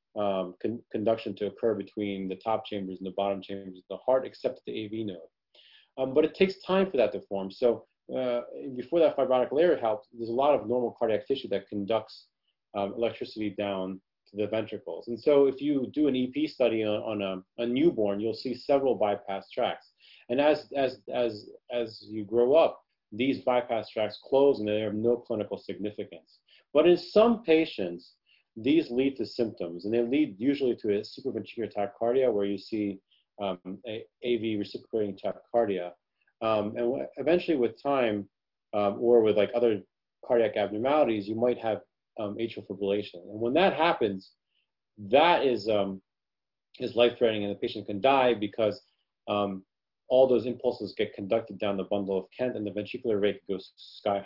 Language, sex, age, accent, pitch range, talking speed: English, male, 30-49, American, 100-125 Hz, 180 wpm